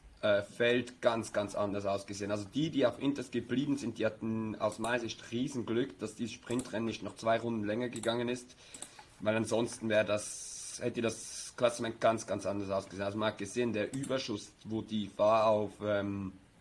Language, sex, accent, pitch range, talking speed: German, male, German, 105-120 Hz, 185 wpm